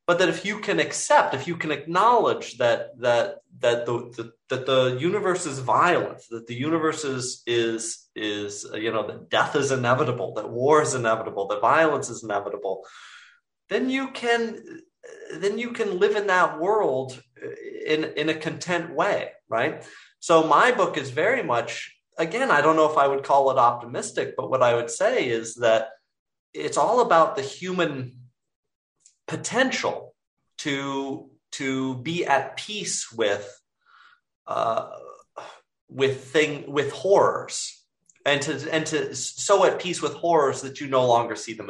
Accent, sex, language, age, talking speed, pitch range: American, male, English, 30-49, 160 wpm, 130-190 Hz